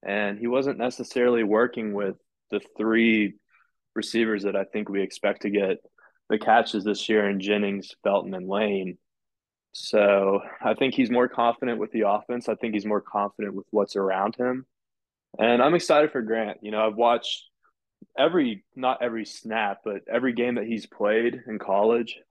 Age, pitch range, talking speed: 20-39, 105-120 Hz, 170 wpm